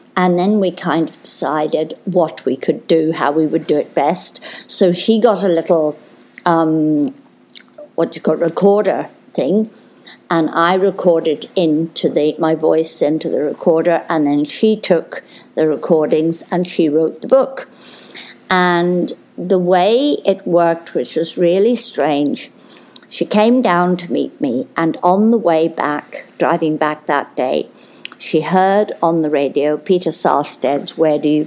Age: 50-69